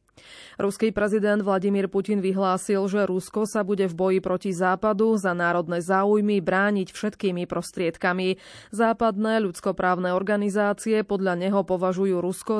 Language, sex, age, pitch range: Slovak, female, 20-39, 180-215 Hz